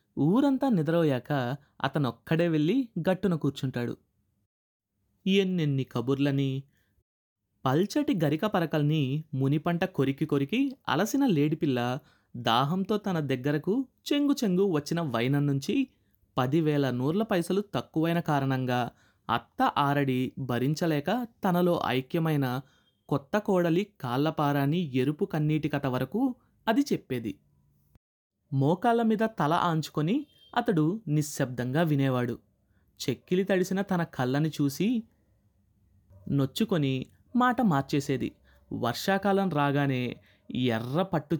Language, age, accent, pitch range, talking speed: Telugu, 20-39, native, 130-185 Hz, 85 wpm